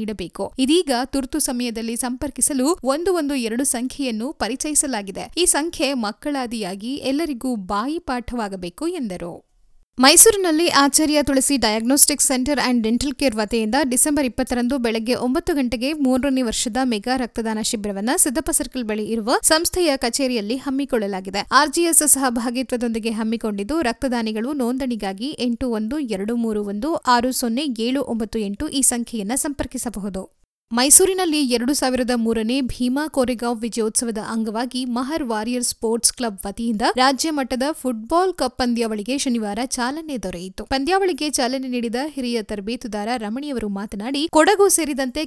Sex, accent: female, native